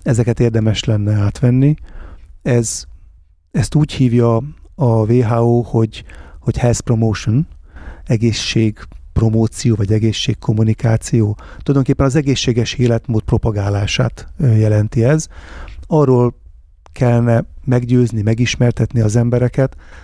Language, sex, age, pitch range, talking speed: Hungarian, male, 30-49, 105-120 Hz, 85 wpm